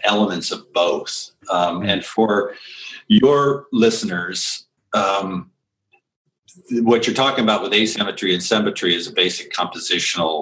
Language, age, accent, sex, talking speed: English, 50-69, American, male, 120 wpm